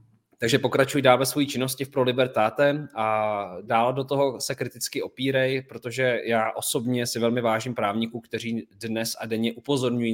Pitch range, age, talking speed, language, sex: 105-125 Hz, 20-39, 160 wpm, Czech, male